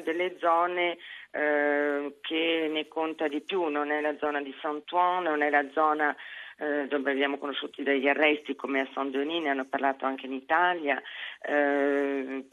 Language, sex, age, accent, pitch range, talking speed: Italian, female, 40-59, native, 140-170 Hz, 165 wpm